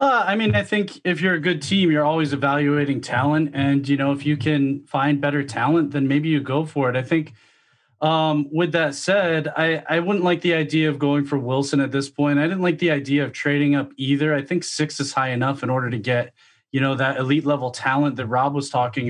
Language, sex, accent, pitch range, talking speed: English, male, American, 140-165 Hz, 240 wpm